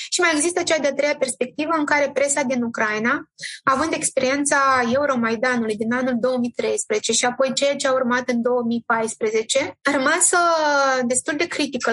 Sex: female